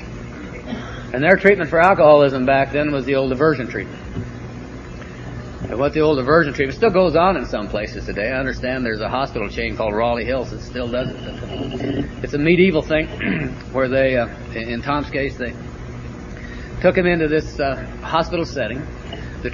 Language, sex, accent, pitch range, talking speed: English, male, American, 120-155 Hz, 175 wpm